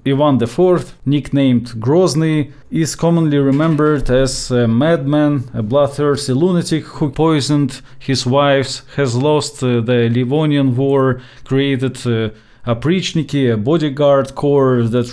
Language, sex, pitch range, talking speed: English, male, 120-145 Hz, 115 wpm